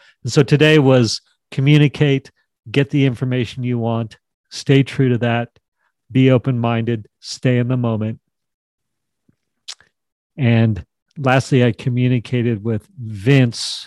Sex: male